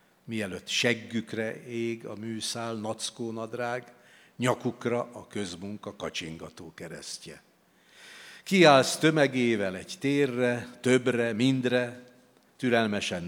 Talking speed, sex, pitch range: 85 wpm, male, 105-125 Hz